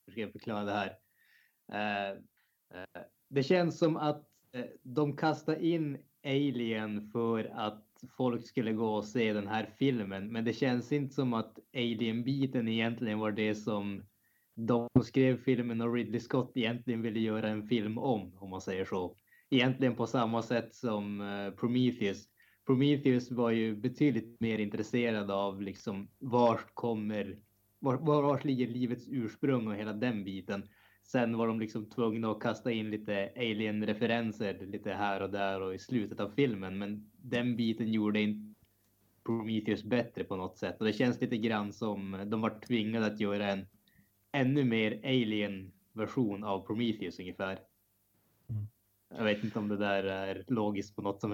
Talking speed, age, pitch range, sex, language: 155 wpm, 20-39, 105-120 Hz, male, Swedish